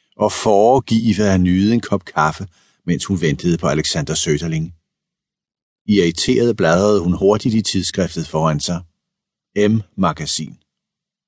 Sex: male